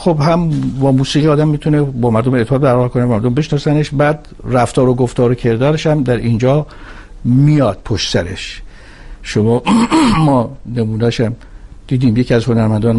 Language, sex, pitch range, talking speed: Persian, male, 105-135 Hz, 145 wpm